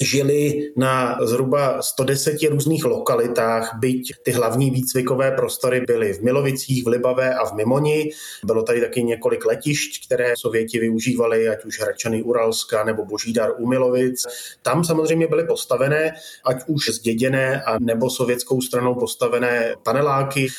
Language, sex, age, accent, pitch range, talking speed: Czech, male, 20-39, native, 115-145 Hz, 145 wpm